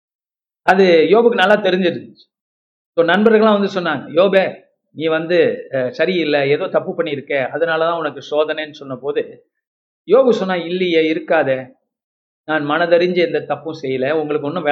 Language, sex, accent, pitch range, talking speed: Tamil, male, native, 160-225 Hz, 120 wpm